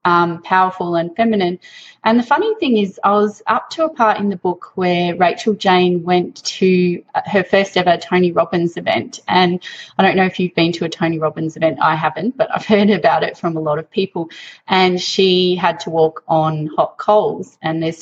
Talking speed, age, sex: 210 wpm, 20-39, female